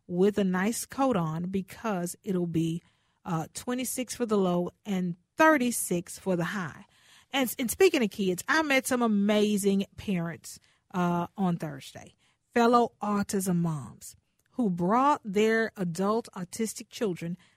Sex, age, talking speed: female, 40-59, 135 wpm